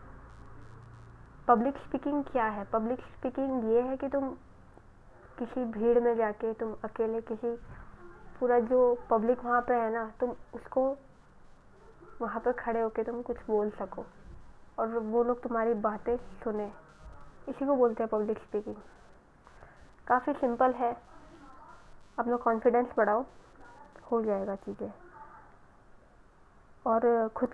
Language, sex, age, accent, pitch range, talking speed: Hindi, female, 20-39, native, 205-235 Hz, 125 wpm